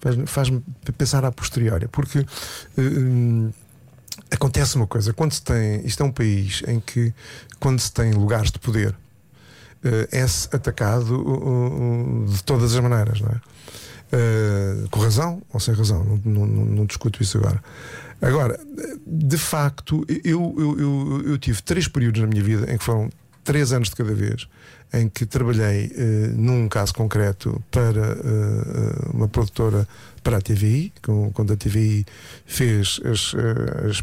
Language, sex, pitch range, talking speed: Portuguese, male, 105-125 Hz, 155 wpm